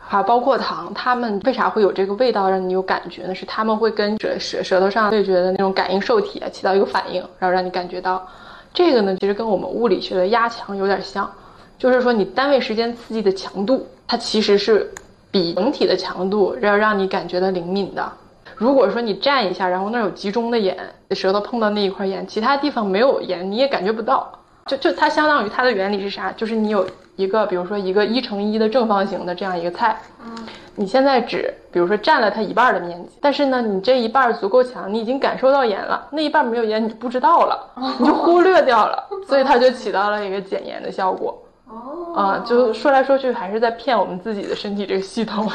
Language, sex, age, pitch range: Chinese, female, 20-39, 190-240 Hz